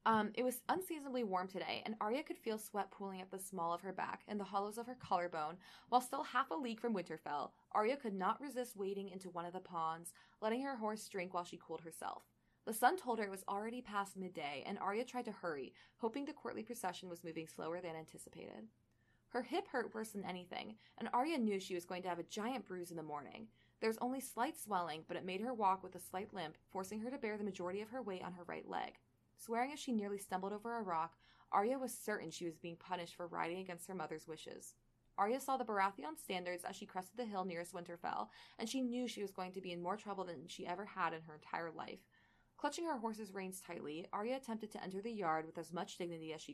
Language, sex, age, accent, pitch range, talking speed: English, female, 20-39, American, 175-235 Hz, 240 wpm